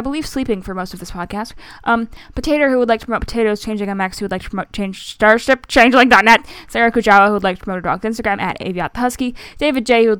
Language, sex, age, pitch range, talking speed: English, female, 10-29, 195-255 Hz, 245 wpm